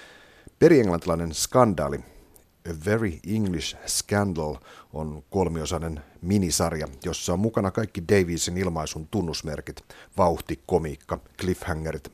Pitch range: 80-95 Hz